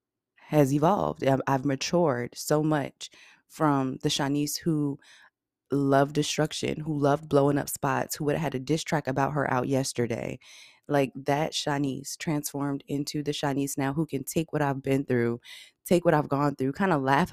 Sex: female